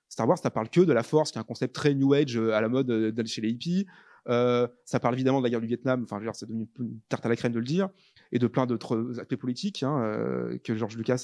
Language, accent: French, French